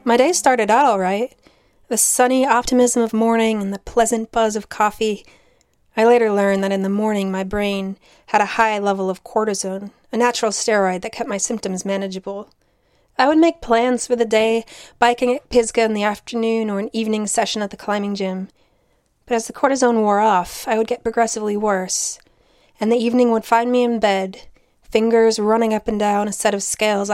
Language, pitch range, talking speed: English, 195-230 Hz, 195 wpm